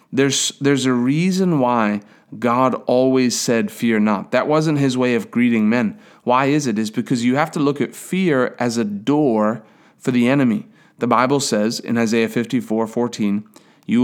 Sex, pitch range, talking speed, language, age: male, 120-150 Hz, 170 wpm, English, 30-49